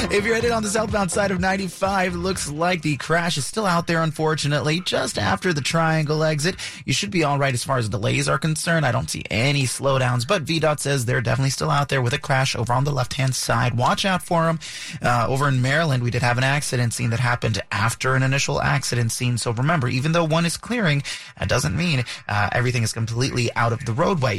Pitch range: 125-155 Hz